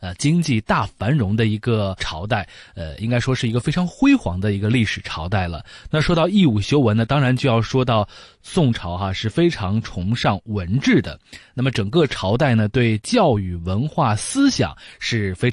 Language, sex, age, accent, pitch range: Chinese, male, 20-39, native, 105-165 Hz